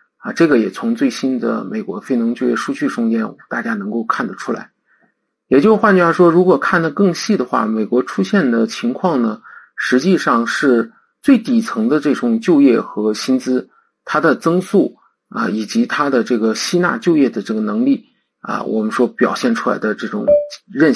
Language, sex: Chinese, male